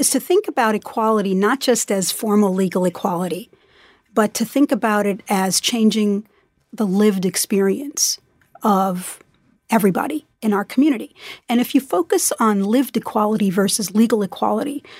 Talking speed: 145 wpm